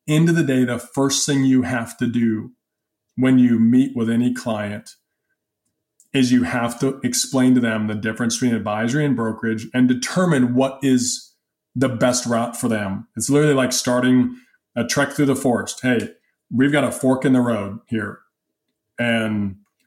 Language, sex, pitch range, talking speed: English, male, 120-140 Hz, 175 wpm